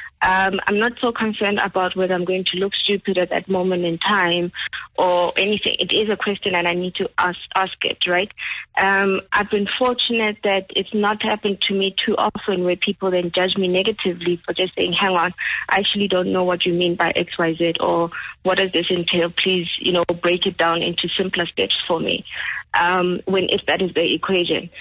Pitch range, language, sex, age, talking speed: 180-205 Hz, English, female, 20-39, 210 wpm